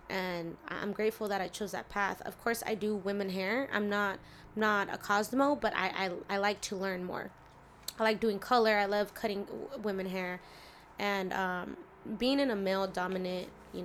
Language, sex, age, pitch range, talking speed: English, female, 20-39, 185-210 Hz, 190 wpm